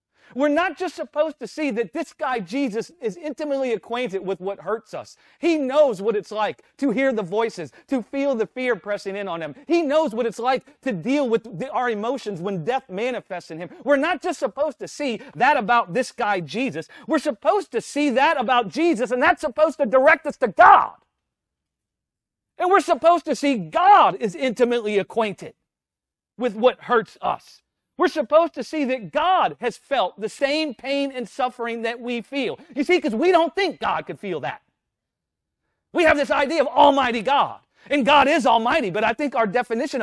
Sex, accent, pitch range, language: male, American, 230-300 Hz, English